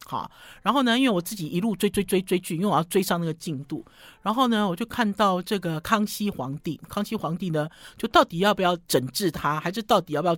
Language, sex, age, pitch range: Chinese, male, 50-69, 160-215 Hz